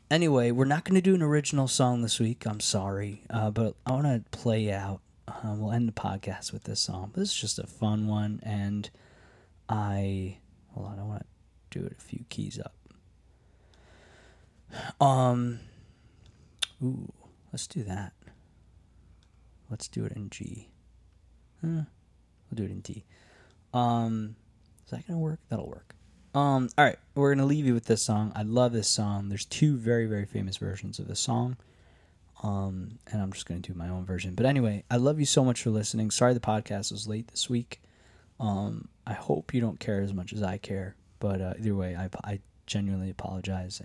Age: 20-39